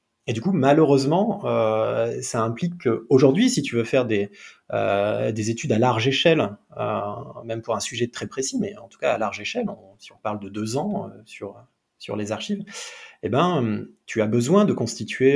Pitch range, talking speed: 110-140 Hz, 205 wpm